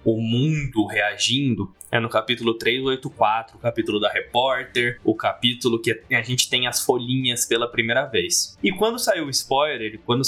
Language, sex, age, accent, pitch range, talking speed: Portuguese, male, 20-39, Brazilian, 115-160 Hz, 165 wpm